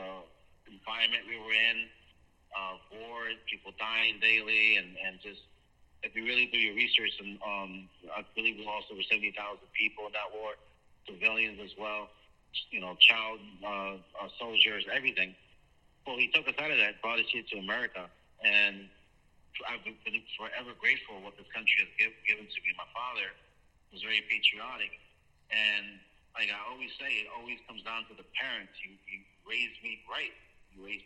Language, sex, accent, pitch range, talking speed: English, male, American, 95-110 Hz, 170 wpm